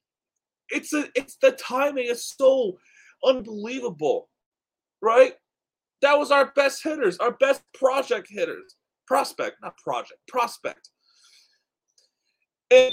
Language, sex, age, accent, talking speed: English, male, 30-49, American, 105 wpm